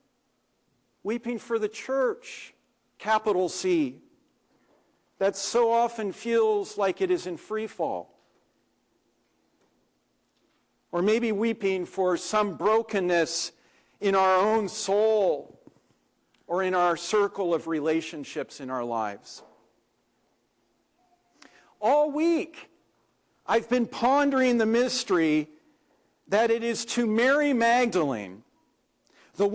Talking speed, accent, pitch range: 100 wpm, American, 185-245 Hz